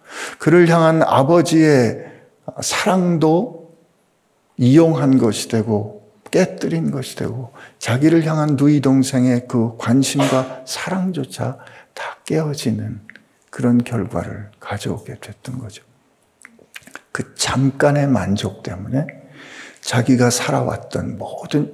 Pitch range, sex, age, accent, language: 105-135 Hz, male, 50-69, native, Korean